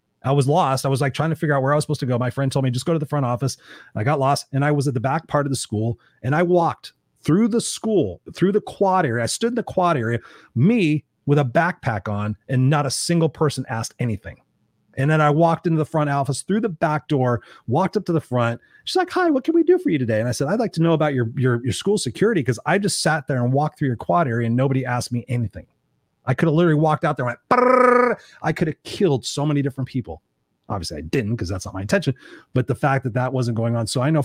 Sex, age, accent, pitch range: male, 30-49, American, 125-155 Hz